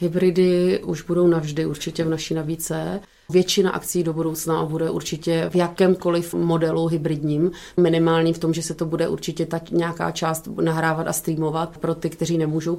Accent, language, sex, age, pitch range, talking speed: native, Czech, female, 30-49, 170-185 Hz, 170 wpm